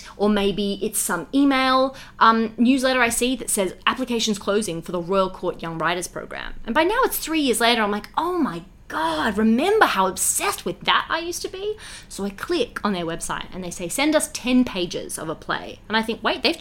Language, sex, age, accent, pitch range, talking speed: English, female, 20-39, Australian, 195-250 Hz, 225 wpm